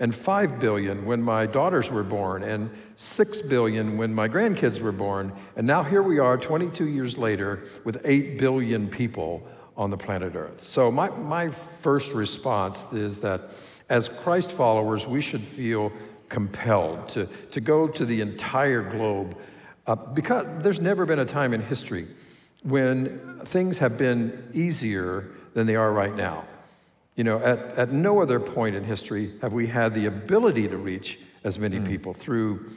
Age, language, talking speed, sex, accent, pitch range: 50-69, English, 170 wpm, male, American, 105-140 Hz